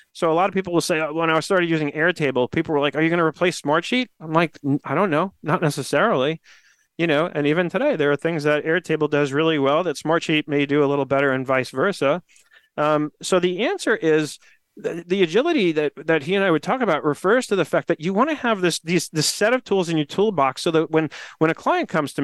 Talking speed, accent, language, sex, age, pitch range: 255 wpm, American, English, male, 40-59, 145-180 Hz